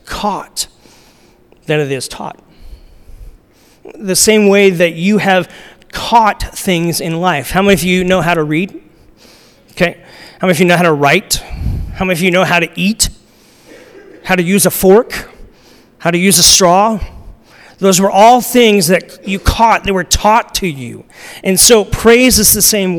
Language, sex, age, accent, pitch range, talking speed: English, male, 40-59, American, 160-195 Hz, 175 wpm